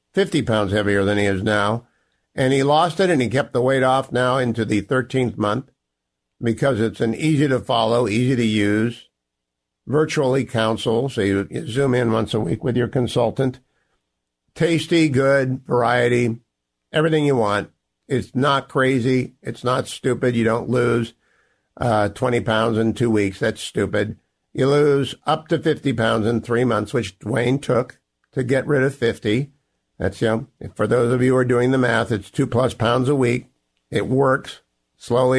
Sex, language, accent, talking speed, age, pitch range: male, English, American, 175 wpm, 50-69, 115-135 Hz